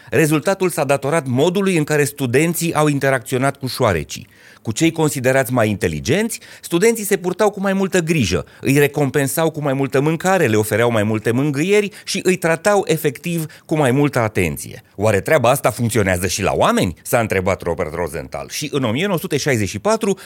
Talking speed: 165 wpm